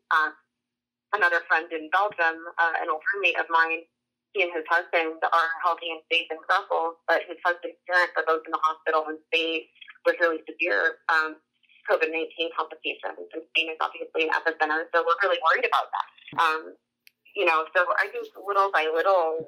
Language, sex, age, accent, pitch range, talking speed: English, female, 30-49, American, 155-175 Hz, 185 wpm